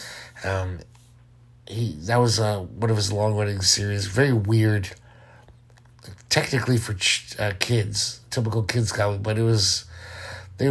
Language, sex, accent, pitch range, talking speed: English, male, American, 100-125 Hz, 140 wpm